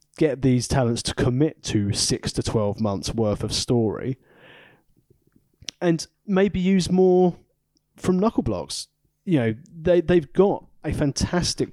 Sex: male